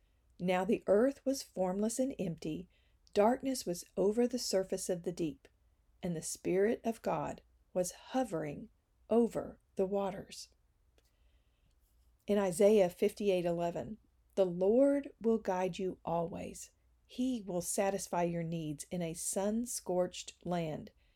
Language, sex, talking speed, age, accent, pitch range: English, female, 120 wpm, 50-69, American, 170-215 Hz